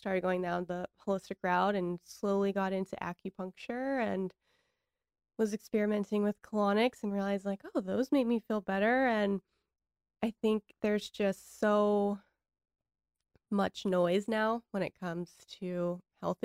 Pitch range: 180-215 Hz